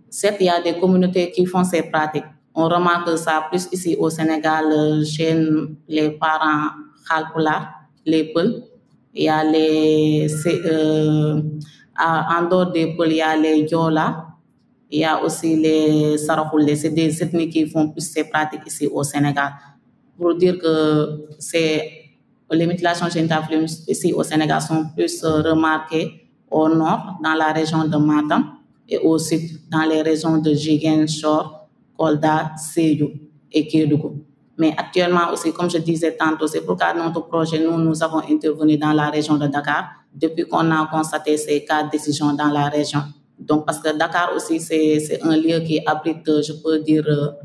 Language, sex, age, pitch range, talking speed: French, female, 20-39, 150-165 Hz, 160 wpm